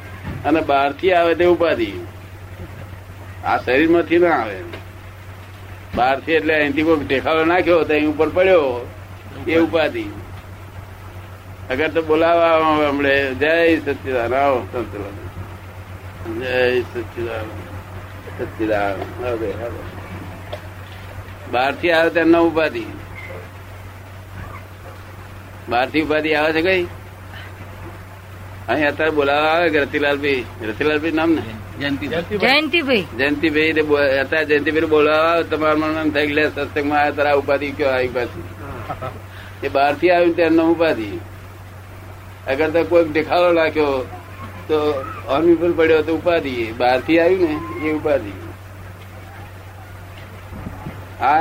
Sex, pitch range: male, 95-155 Hz